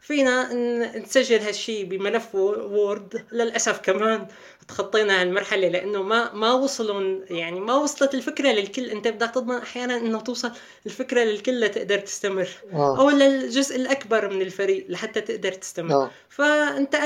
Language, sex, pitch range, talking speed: Arabic, female, 210-260 Hz, 130 wpm